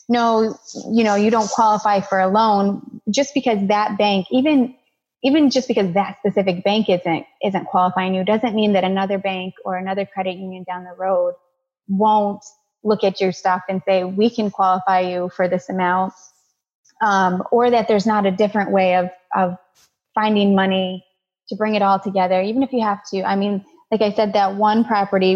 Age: 20-39